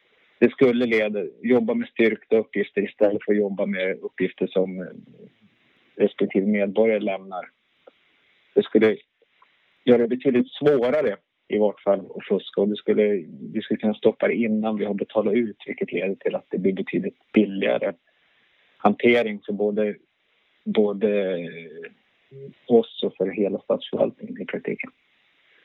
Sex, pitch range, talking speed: male, 105-125 Hz, 140 wpm